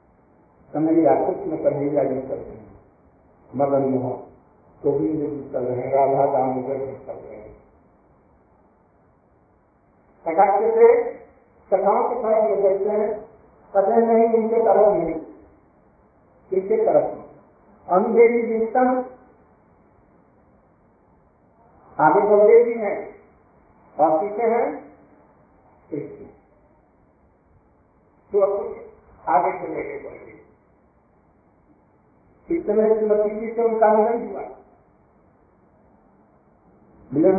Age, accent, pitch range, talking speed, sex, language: 50-69, native, 155-225 Hz, 50 wpm, male, Hindi